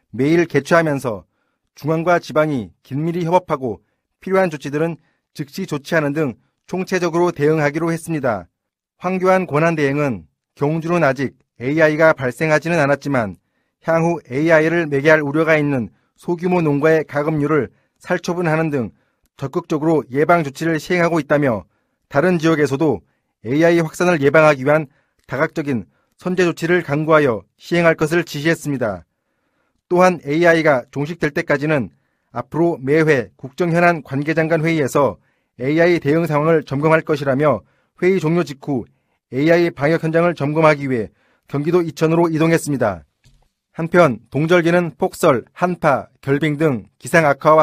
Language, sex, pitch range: Korean, male, 140-170 Hz